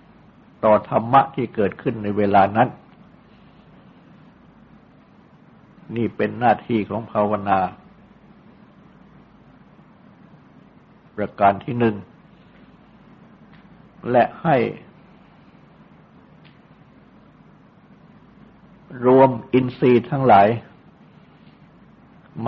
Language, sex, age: Thai, male, 60-79